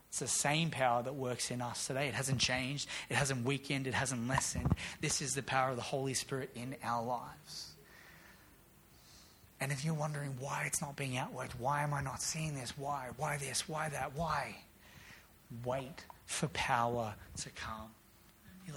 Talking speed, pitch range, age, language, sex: 180 wpm, 125-150 Hz, 30-49, English, male